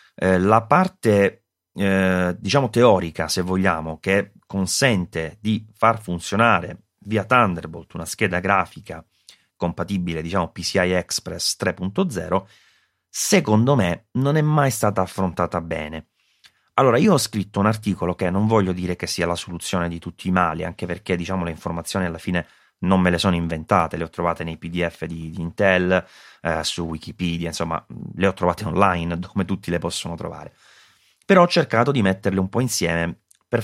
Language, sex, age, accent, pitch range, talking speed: Italian, male, 30-49, native, 85-110 Hz, 160 wpm